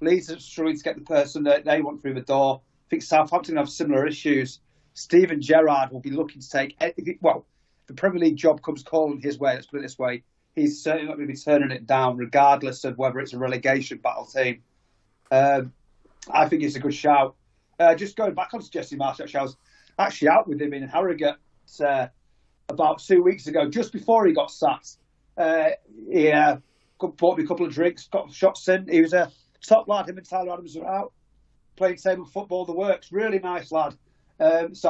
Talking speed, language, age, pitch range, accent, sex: 215 wpm, English, 30-49, 140-175 Hz, British, male